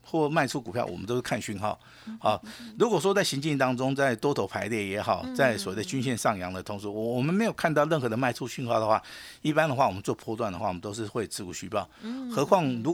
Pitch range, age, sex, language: 105-165 Hz, 50-69, male, Chinese